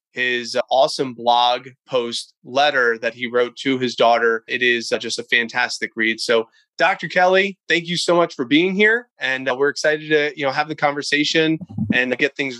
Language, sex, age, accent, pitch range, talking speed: English, male, 20-39, American, 120-155 Hz, 195 wpm